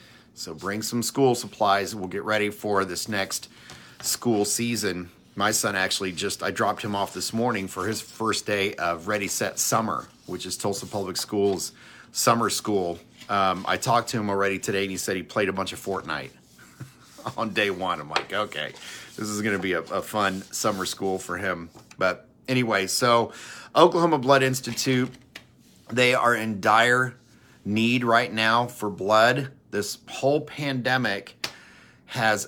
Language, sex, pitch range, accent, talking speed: English, male, 95-115 Hz, American, 165 wpm